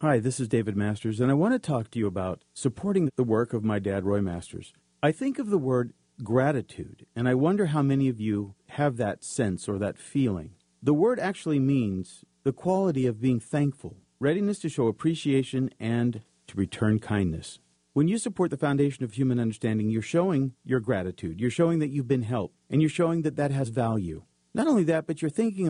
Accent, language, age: American, English, 40-59